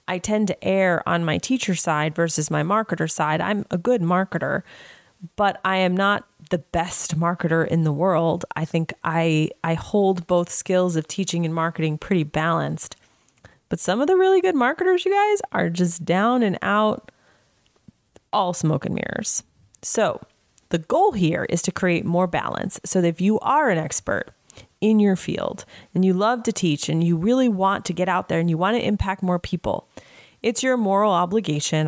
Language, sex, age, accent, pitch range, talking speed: English, female, 30-49, American, 170-220 Hz, 190 wpm